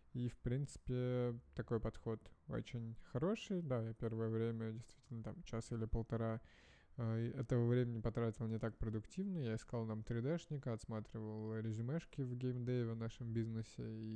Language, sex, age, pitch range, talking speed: Russian, male, 20-39, 110-125 Hz, 155 wpm